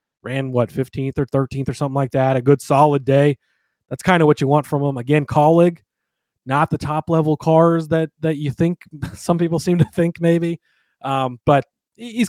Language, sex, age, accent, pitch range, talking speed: English, male, 30-49, American, 130-155 Hz, 200 wpm